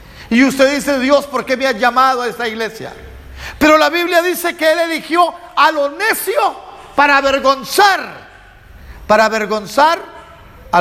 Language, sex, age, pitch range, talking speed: Spanish, male, 50-69, 240-320 Hz, 150 wpm